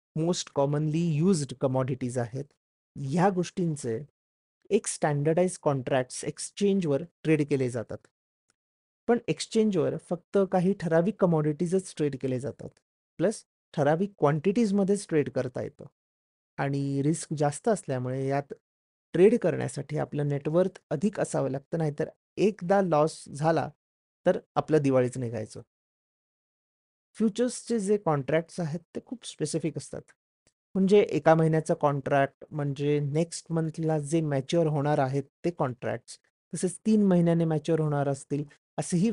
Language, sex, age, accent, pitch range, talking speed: Marathi, male, 30-49, native, 140-175 Hz, 115 wpm